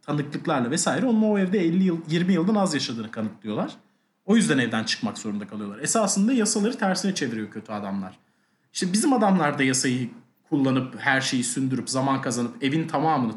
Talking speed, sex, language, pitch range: 165 wpm, male, Turkish, 135-210 Hz